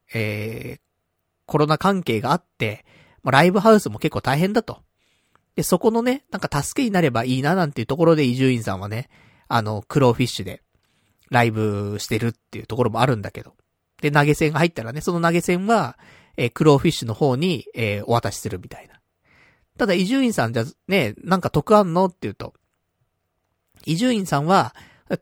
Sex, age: male, 40-59